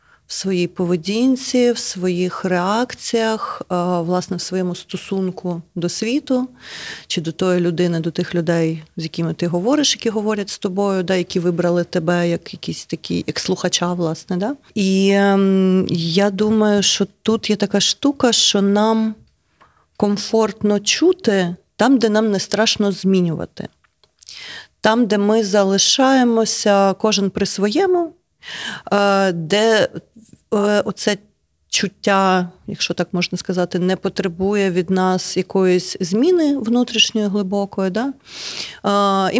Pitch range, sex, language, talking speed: 180-215 Hz, female, Ukrainian, 120 wpm